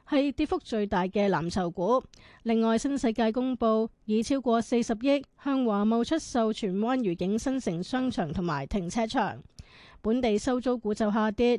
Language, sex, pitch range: Chinese, female, 215-260 Hz